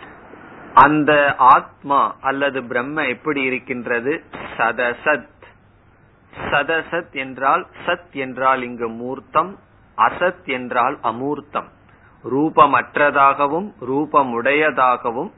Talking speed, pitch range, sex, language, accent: 70 wpm, 120-150 Hz, male, Tamil, native